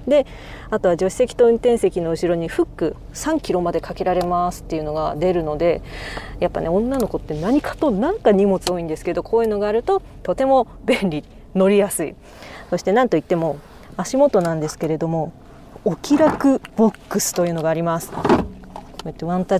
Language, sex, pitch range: Japanese, female, 170-235 Hz